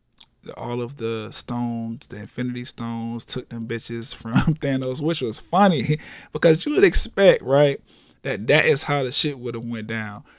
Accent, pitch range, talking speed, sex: American, 115-140 Hz, 175 wpm, male